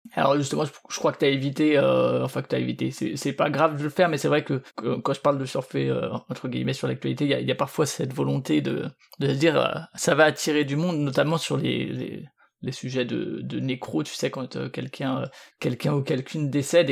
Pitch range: 135-170 Hz